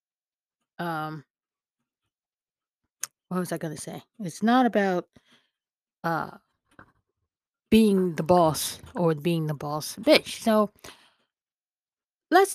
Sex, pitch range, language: female, 160-240 Hz, English